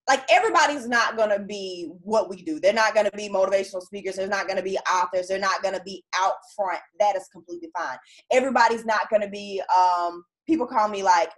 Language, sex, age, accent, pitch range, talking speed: English, female, 20-39, American, 190-235 Hz, 225 wpm